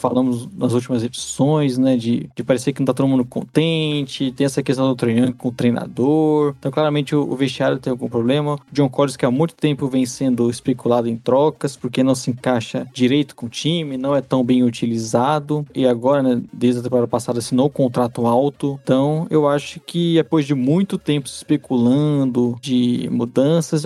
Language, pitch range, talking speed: Portuguese, 125-150 Hz, 195 wpm